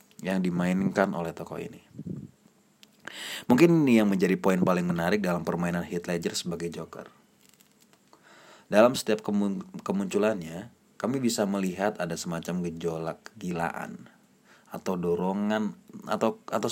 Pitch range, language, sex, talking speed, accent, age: 90-125 Hz, Indonesian, male, 115 wpm, native, 30-49